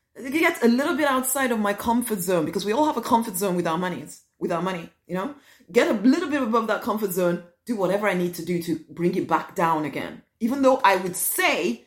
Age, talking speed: 30-49, 255 wpm